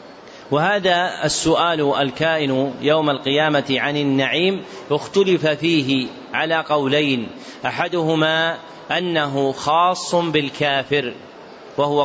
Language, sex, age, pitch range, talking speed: Arabic, male, 40-59, 140-170 Hz, 80 wpm